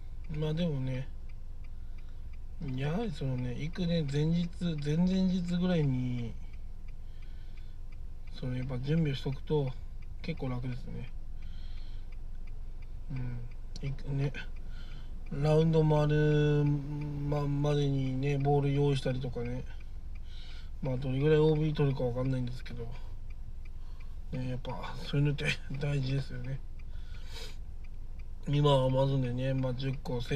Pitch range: 125-150 Hz